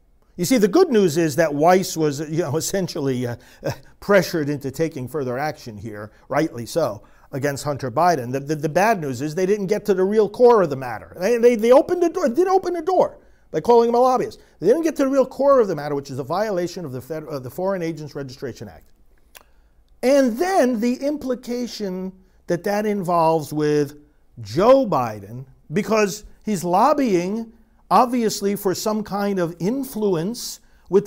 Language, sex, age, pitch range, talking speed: English, male, 50-69, 140-210 Hz, 195 wpm